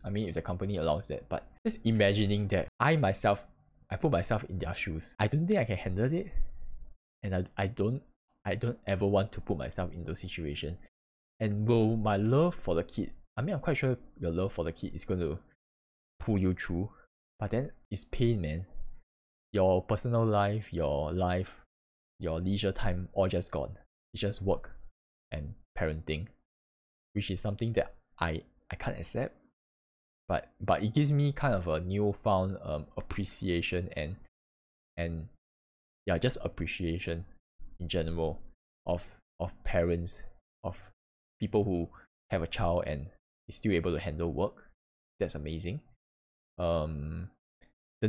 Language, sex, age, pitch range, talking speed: English, male, 10-29, 80-105 Hz, 165 wpm